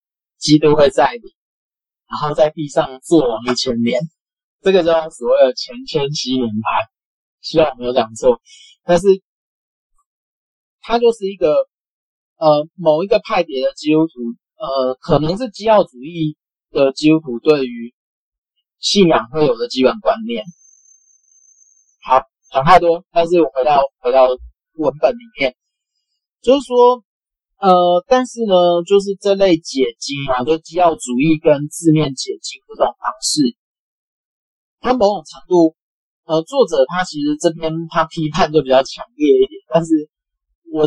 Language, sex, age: Chinese, male, 30-49